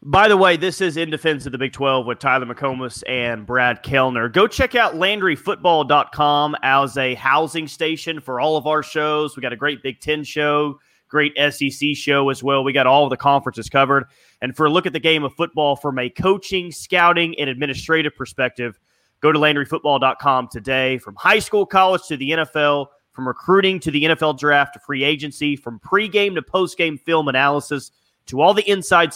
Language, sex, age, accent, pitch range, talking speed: English, male, 30-49, American, 130-165 Hz, 200 wpm